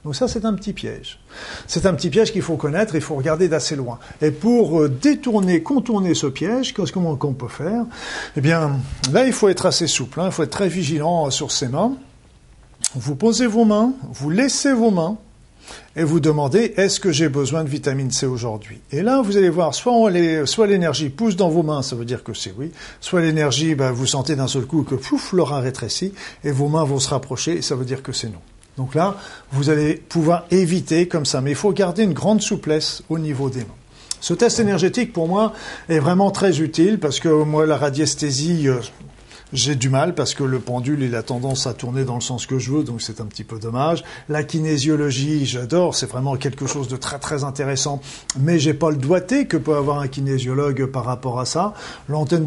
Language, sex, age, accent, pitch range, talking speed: French, male, 50-69, French, 135-175 Hz, 220 wpm